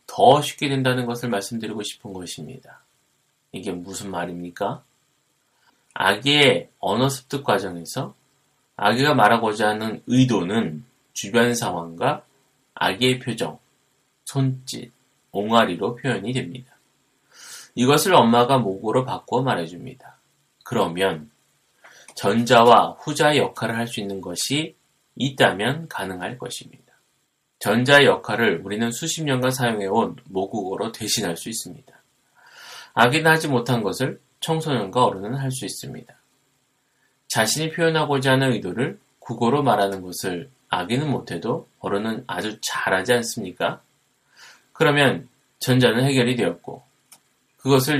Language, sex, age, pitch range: Korean, male, 30-49, 100-135 Hz